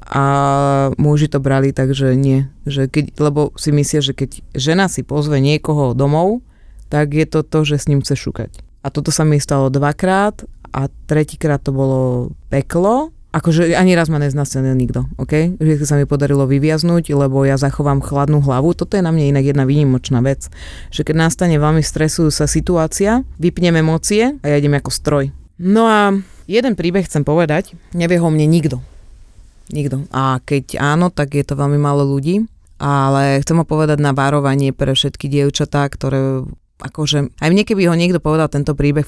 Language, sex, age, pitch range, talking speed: Slovak, female, 30-49, 135-160 Hz, 175 wpm